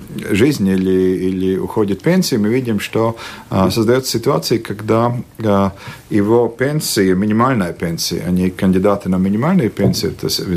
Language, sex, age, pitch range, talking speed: Russian, male, 50-69, 95-115 Hz, 135 wpm